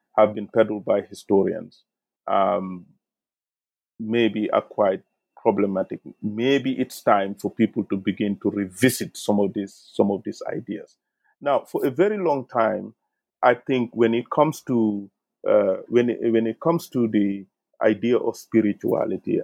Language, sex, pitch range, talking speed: English, male, 100-130 Hz, 150 wpm